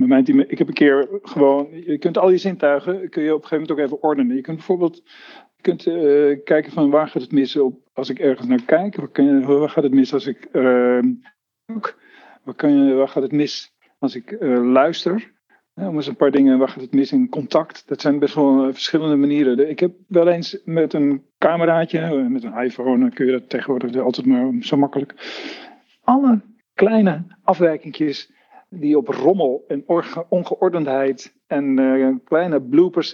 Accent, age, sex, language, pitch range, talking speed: Dutch, 50-69, male, Dutch, 140-195 Hz, 195 wpm